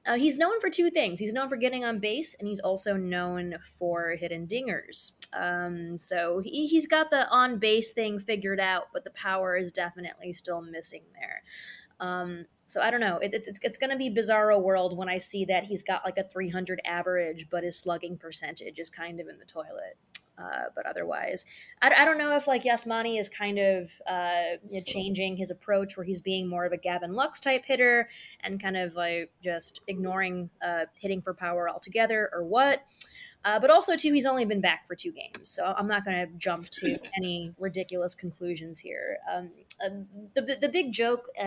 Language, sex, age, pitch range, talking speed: English, female, 20-39, 175-220 Hz, 200 wpm